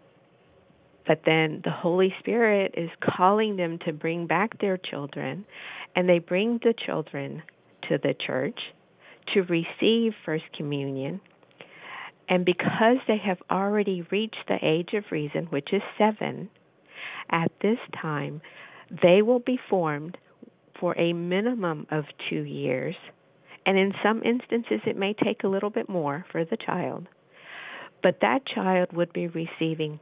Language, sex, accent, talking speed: English, female, American, 140 wpm